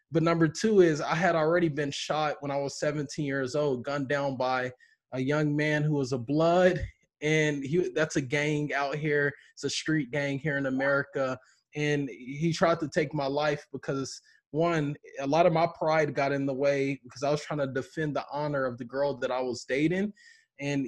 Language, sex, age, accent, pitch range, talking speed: English, male, 20-39, American, 135-165 Hz, 210 wpm